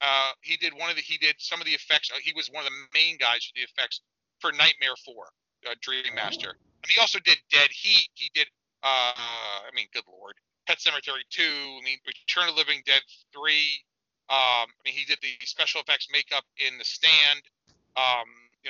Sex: male